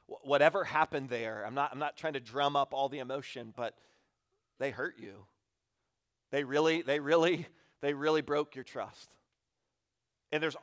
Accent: American